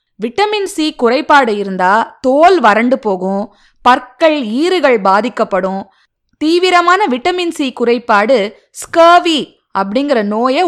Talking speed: 95 wpm